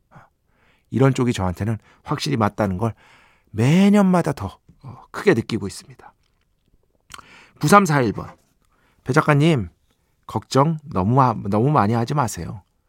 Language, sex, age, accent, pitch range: Korean, male, 40-59, native, 110-150 Hz